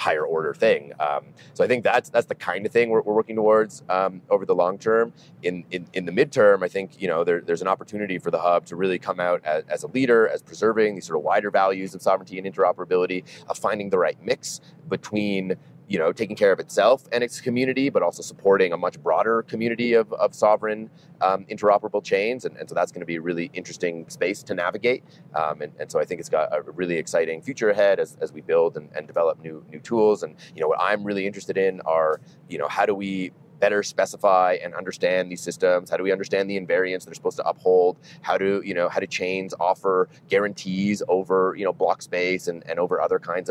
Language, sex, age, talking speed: English, male, 30-49, 235 wpm